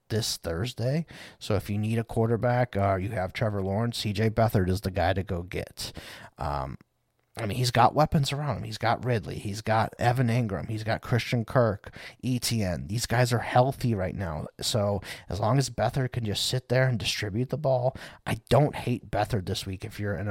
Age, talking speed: 30-49, 205 wpm